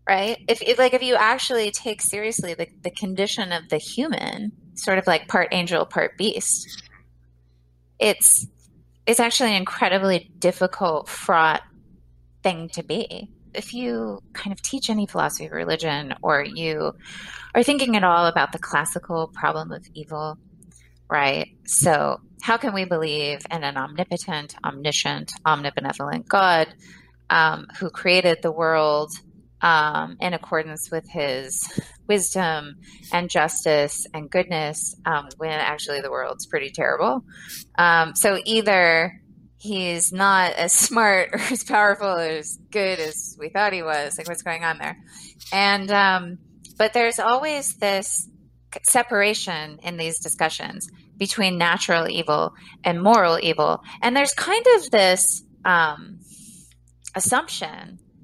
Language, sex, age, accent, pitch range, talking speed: English, female, 20-39, American, 155-205 Hz, 135 wpm